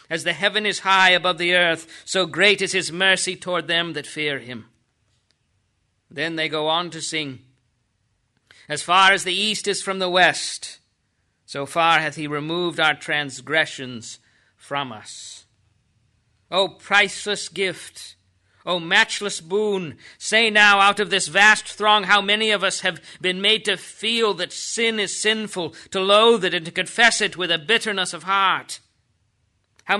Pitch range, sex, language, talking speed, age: 130-195 Hz, male, English, 160 wpm, 50-69